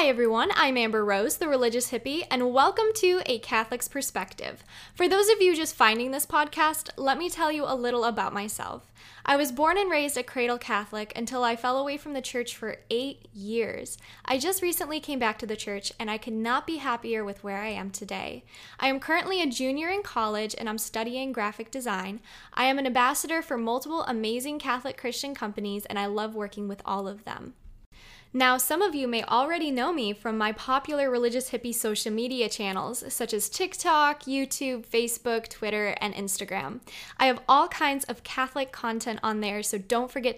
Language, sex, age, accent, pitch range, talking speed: English, female, 10-29, American, 220-280 Hz, 200 wpm